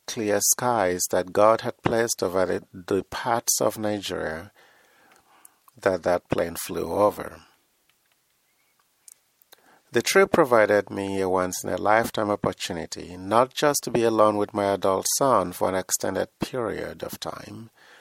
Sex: male